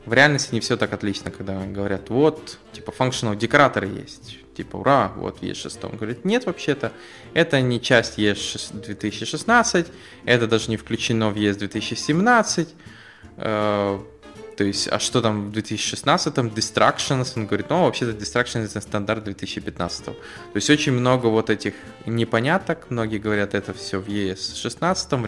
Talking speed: 145 wpm